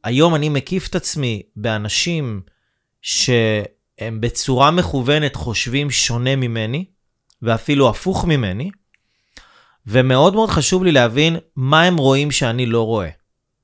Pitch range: 120-155 Hz